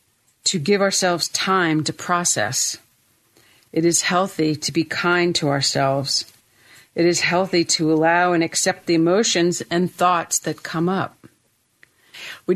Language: English